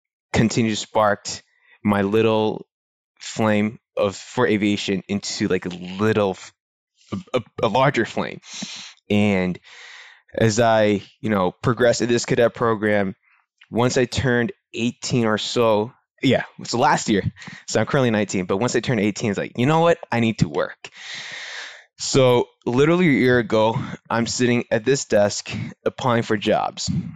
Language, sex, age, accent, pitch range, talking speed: English, male, 20-39, American, 105-125 Hz, 155 wpm